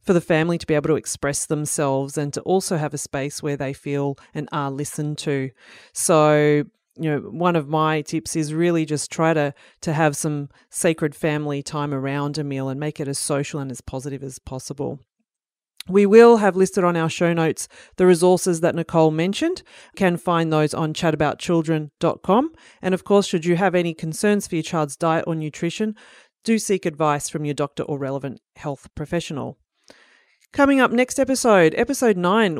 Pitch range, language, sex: 150-195 Hz, English, female